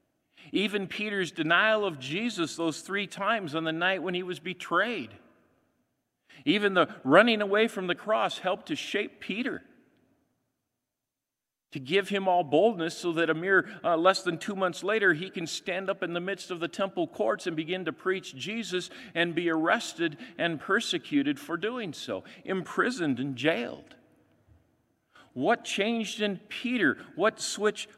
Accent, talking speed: American, 160 wpm